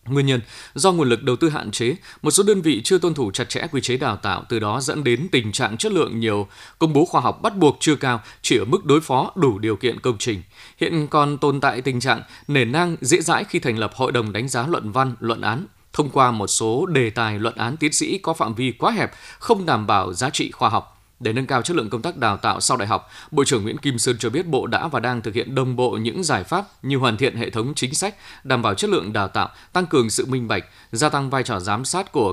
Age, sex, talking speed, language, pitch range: 20-39, male, 275 wpm, Vietnamese, 115-150 Hz